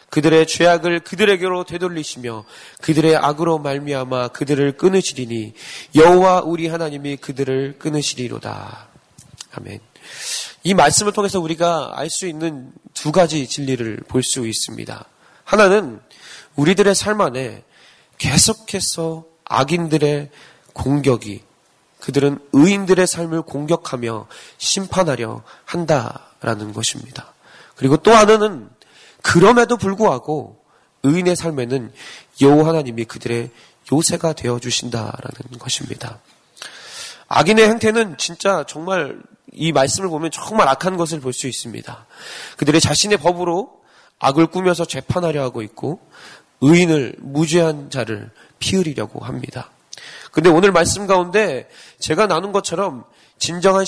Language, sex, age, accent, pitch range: Korean, male, 20-39, native, 130-180 Hz